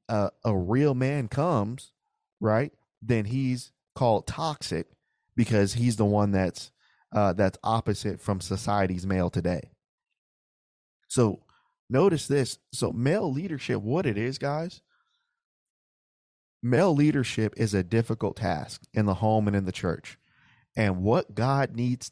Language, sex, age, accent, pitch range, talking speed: English, male, 20-39, American, 100-135 Hz, 135 wpm